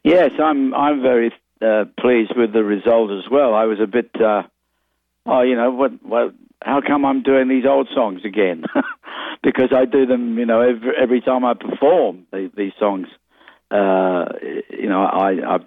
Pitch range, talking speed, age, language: 110-135 Hz, 185 wpm, 60-79, English